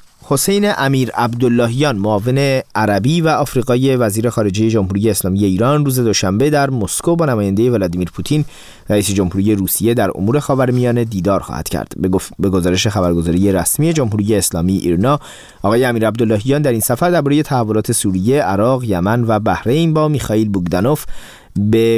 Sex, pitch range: male, 95-130 Hz